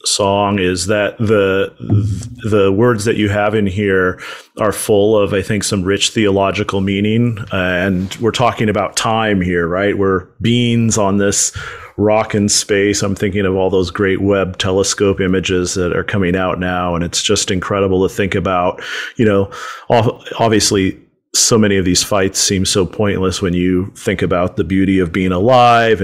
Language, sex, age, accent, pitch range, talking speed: English, male, 40-59, American, 95-110 Hz, 175 wpm